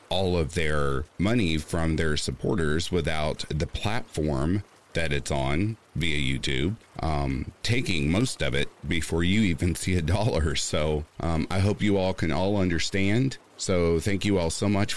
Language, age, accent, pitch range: English, 40-59, American, 80-100 Hz